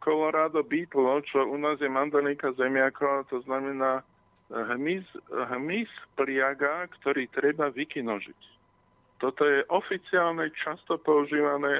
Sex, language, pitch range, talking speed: male, Slovak, 130-155 Hz, 105 wpm